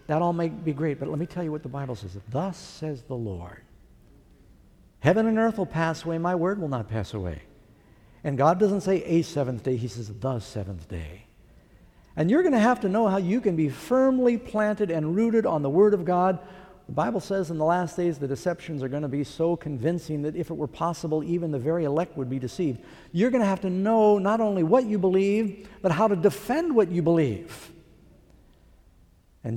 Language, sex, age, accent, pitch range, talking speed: English, male, 60-79, American, 125-185 Hz, 220 wpm